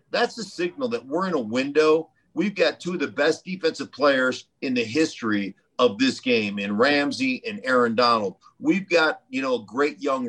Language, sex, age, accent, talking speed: English, male, 50-69, American, 200 wpm